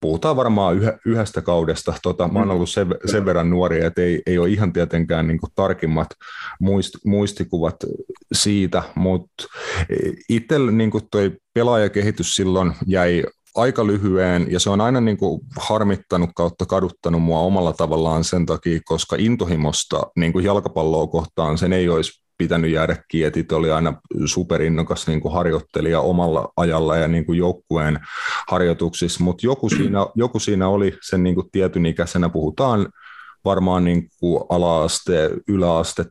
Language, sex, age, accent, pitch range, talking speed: Finnish, male, 30-49, native, 80-95 Hz, 140 wpm